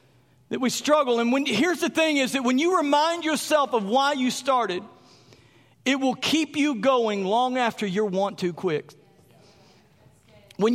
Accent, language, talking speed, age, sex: American, English, 165 wpm, 50-69, male